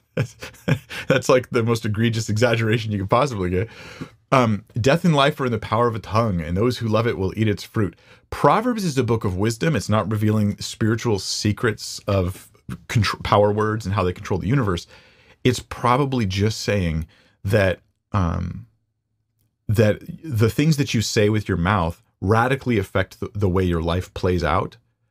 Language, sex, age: English, male, 30-49